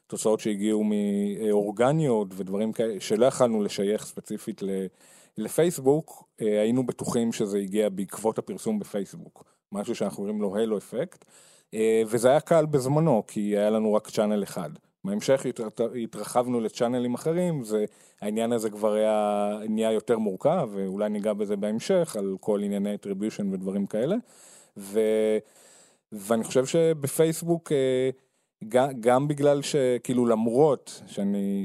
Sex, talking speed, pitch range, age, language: male, 120 wpm, 105-135 Hz, 20-39, Hebrew